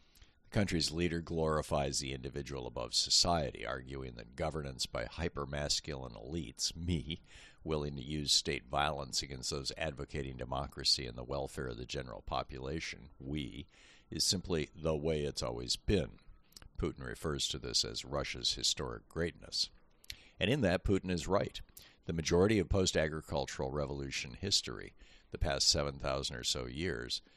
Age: 50-69